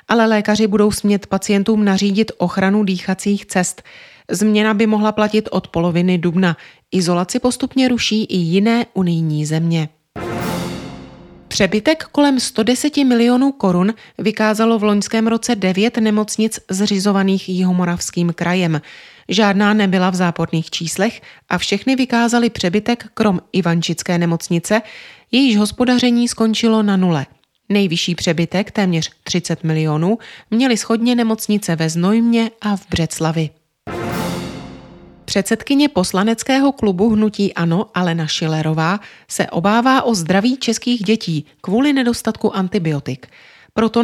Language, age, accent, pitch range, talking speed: Czech, 30-49, native, 175-225 Hz, 115 wpm